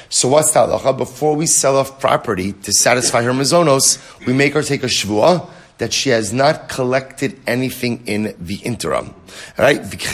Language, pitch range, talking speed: English, 115-140 Hz, 180 wpm